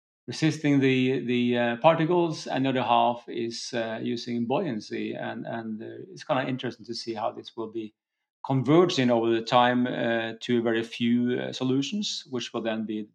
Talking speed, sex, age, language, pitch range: 180 wpm, male, 40-59, English, 120-140 Hz